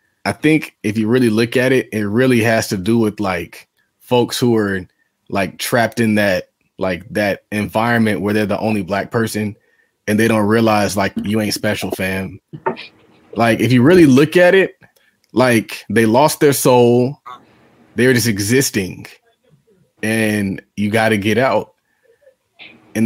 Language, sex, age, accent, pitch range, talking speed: English, male, 20-39, American, 105-120 Hz, 165 wpm